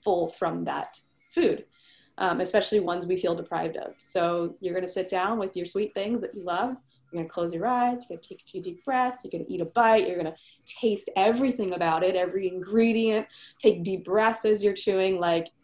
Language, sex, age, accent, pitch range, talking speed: English, female, 20-39, American, 180-225 Hz, 225 wpm